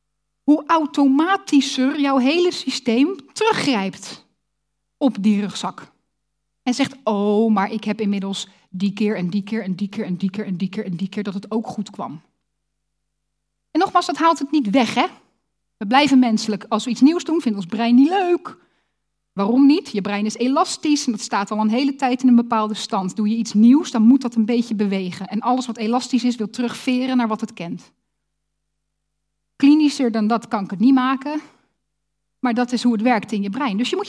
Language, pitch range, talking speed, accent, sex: Dutch, 215-300 Hz, 205 wpm, Dutch, female